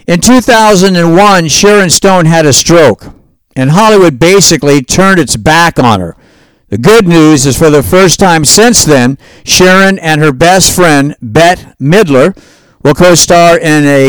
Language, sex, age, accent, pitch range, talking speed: English, male, 60-79, American, 150-185 Hz, 155 wpm